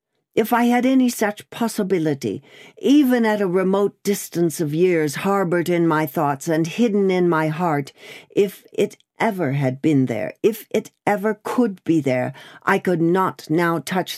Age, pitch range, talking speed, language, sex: 60-79, 145-200 Hz, 165 wpm, English, female